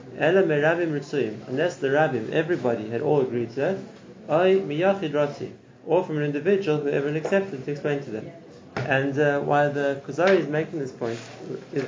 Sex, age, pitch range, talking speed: male, 30-49, 130-155 Hz, 150 wpm